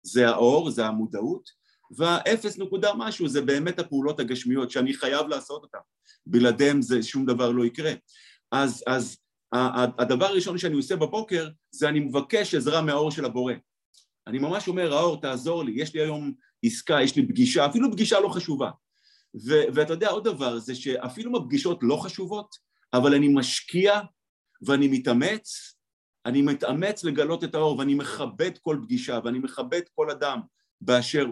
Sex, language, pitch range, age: male, Hebrew, 130-195 Hz, 50-69